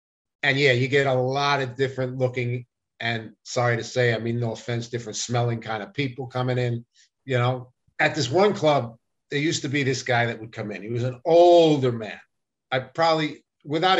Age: 50-69